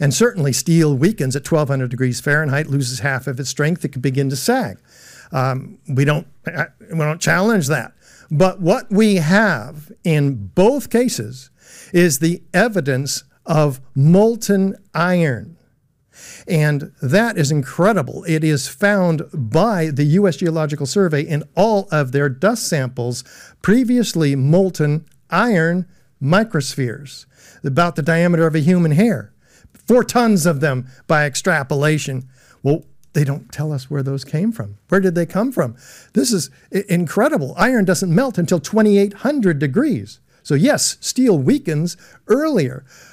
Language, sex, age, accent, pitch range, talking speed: English, male, 50-69, American, 140-190 Hz, 140 wpm